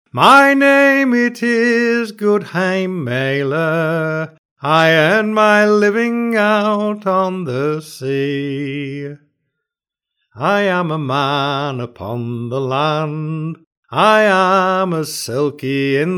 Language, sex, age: English, male, 60-79